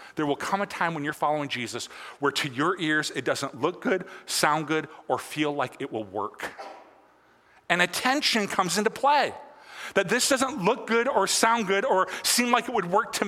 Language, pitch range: English, 185-250 Hz